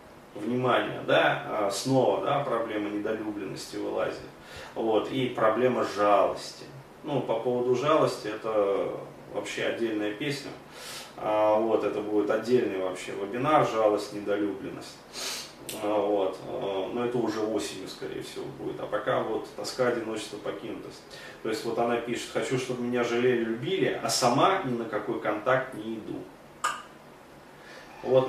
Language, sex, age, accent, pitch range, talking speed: Russian, male, 30-49, native, 105-125 Hz, 125 wpm